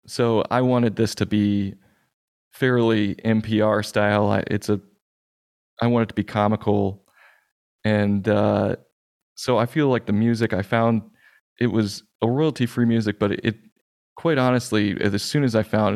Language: English